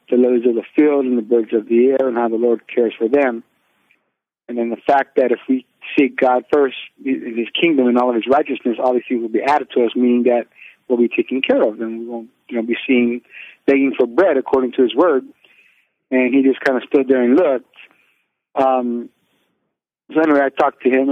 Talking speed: 230 wpm